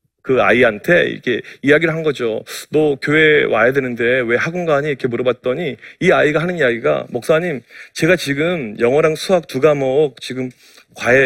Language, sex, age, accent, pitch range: Korean, male, 40-59, native, 135-195 Hz